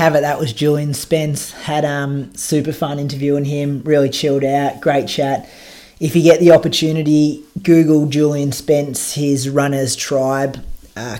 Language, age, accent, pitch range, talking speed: English, 20-39, Australian, 140-155 Hz, 155 wpm